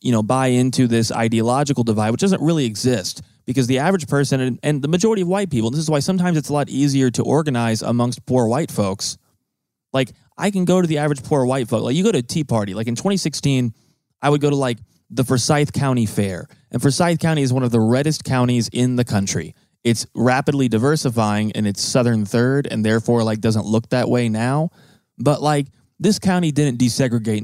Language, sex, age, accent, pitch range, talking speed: English, male, 20-39, American, 115-145 Hz, 210 wpm